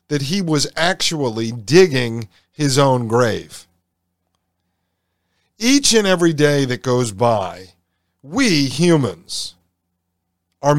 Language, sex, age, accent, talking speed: English, male, 50-69, American, 100 wpm